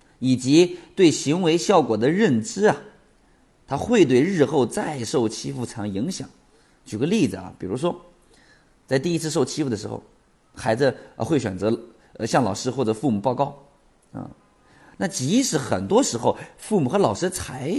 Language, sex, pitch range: Chinese, male, 105-140 Hz